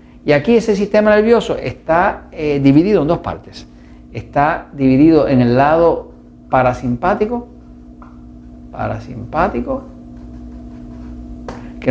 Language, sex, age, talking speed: Spanish, male, 50-69, 95 wpm